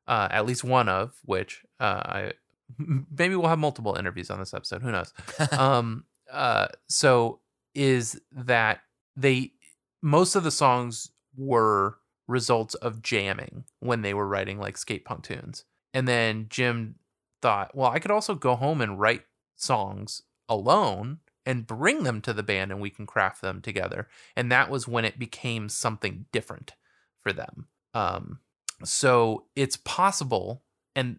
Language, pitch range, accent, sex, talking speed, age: English, 110-130 Hz, American, male, 155 wpm, 20-39